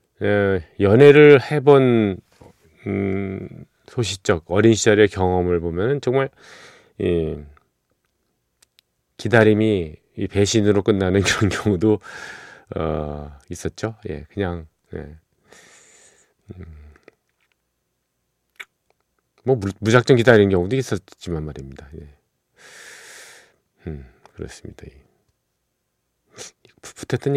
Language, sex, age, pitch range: Korean, male, 40-59, 85-115 Hz